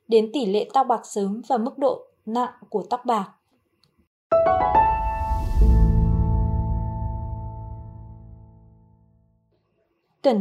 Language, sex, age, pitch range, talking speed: Vietnamese, female, 20-39, 200-270 Hz, 80 wpm